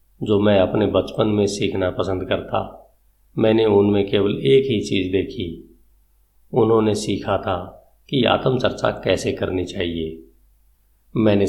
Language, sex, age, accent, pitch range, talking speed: Hindi, male, 50-69, native, 95-110 Hz, 125 wpm